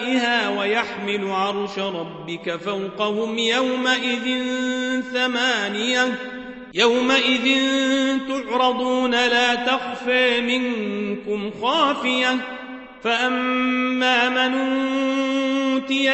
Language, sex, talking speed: Arabic, male, 50 wpm